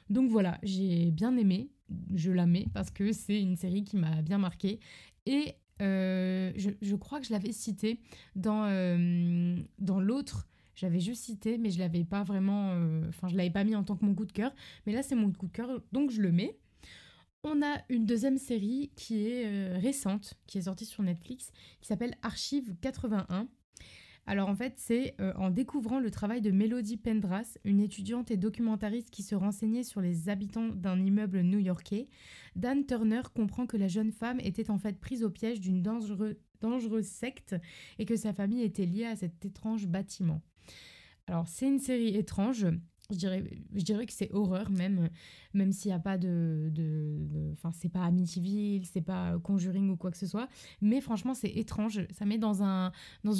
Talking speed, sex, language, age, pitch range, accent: 195 wpm, female, French, 20-39, 185-225 Hz, French